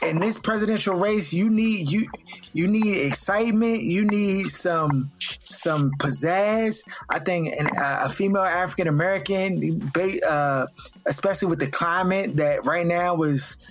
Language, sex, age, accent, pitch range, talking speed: English, male, 20-39, American, 140-175 Hz, 140 wpm